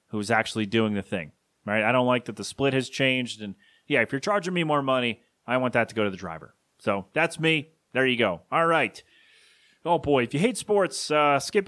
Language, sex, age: English, male, 30-49